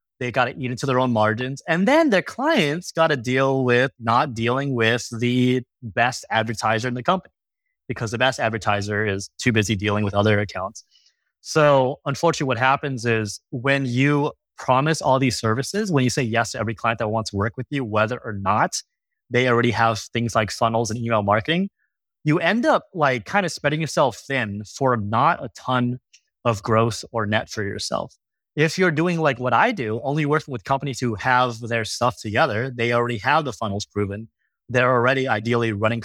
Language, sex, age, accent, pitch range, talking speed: English, male, 20-39, American, 110-135 Hz, 195 wpm